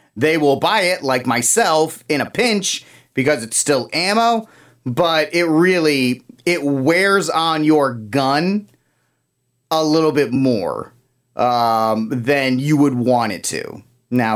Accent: American